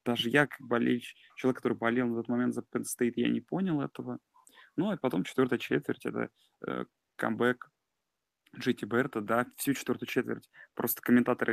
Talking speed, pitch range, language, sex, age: 165 wpm, 120-130 Hz, Russian, male, 20-39